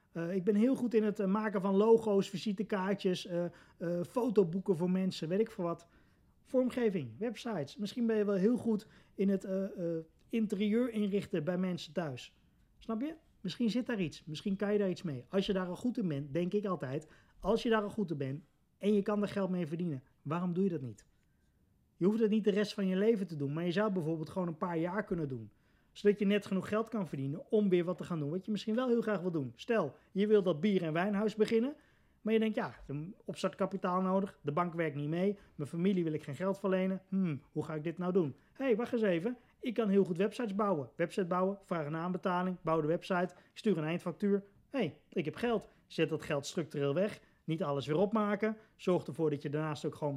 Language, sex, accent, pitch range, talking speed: Dutch, male, Dutch, 165-210 Hz, 235 wpm